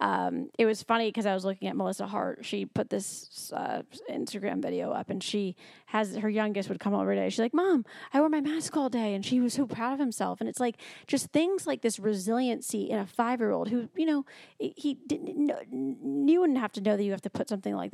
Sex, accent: female, American